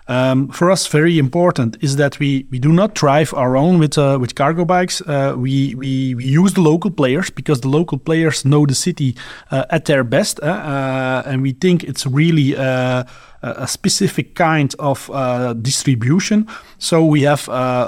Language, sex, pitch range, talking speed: Dutch, male, 130-165 Hz, 185 wpm